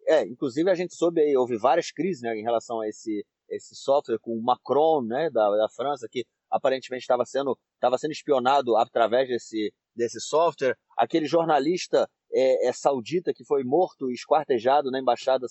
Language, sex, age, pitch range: Portuguese, male, 30-49, 135-205 Hz